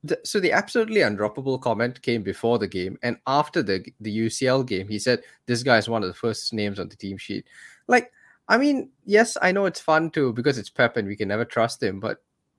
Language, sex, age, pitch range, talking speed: English, male, 20-39, 110-170 Hz, 230 wpm